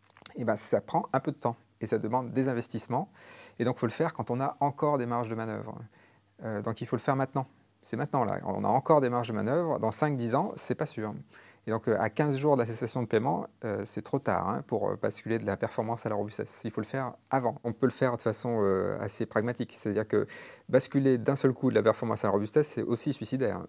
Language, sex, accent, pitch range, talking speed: French, male, French, 105-130 Hz, 265 wpm